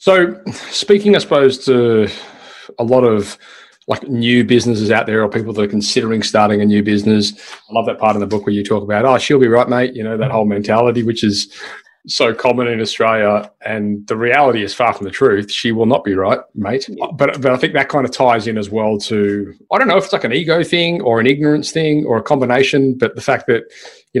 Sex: male